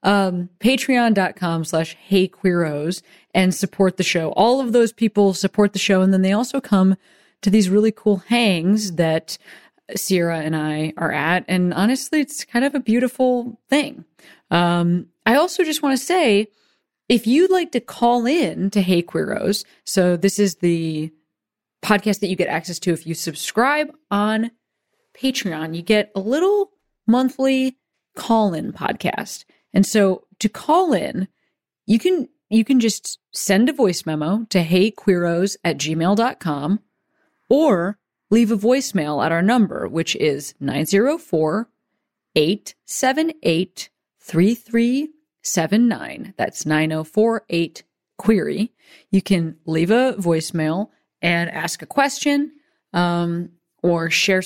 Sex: female